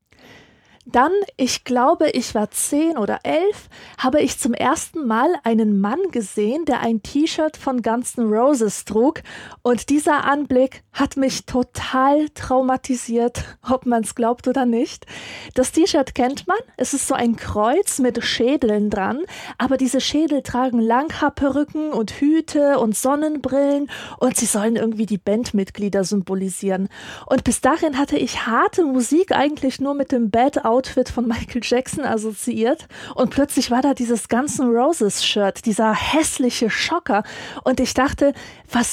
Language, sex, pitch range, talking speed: German, female, 225-285 Hz, 150 wpm